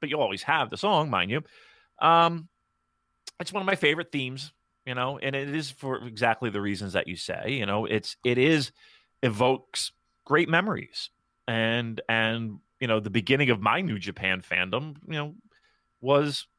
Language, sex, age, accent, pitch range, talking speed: English, male, 30-49, American, 105-145 Hz, 175 wpm